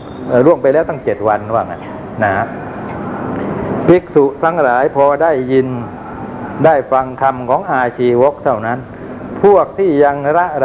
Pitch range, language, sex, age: 115-130 Hz, Thai, male, 60-79